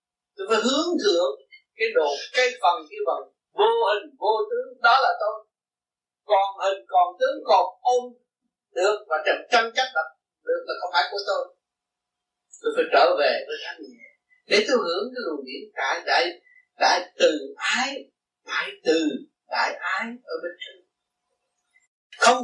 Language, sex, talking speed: Vietnamese, male, 165 wpm